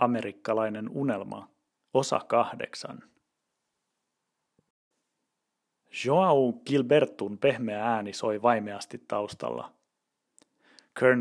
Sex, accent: male, native